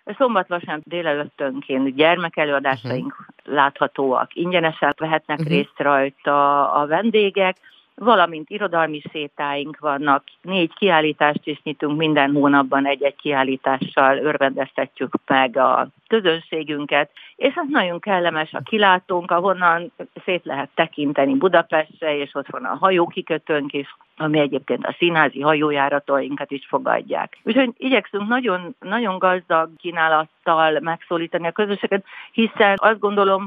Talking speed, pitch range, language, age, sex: 115 wpm, 145-180 Hz, Hungarian, 50-69, female